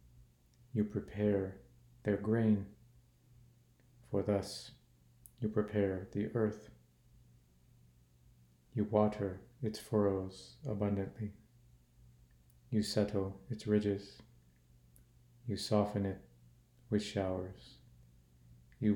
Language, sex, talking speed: English, male, 80 wpm